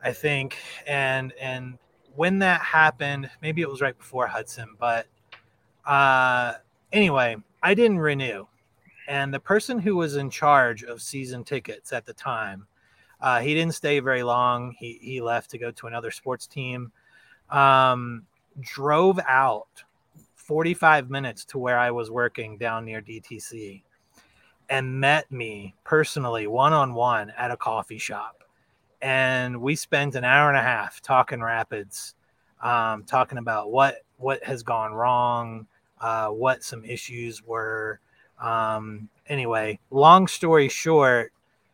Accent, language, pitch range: American, English, 115-145 Hz